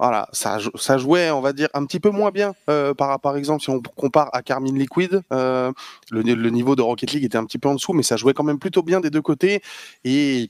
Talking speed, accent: 270 wpm, French